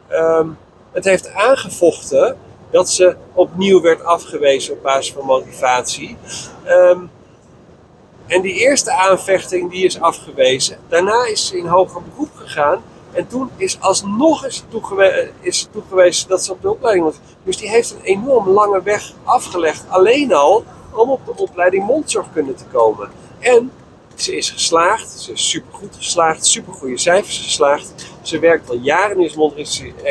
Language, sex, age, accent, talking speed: Dutch, male, 50-69, Dutch, 155 wpm